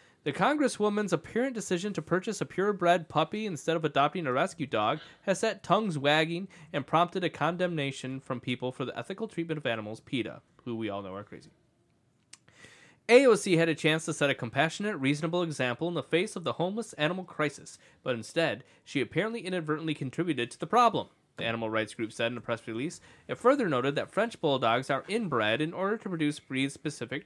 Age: 20-39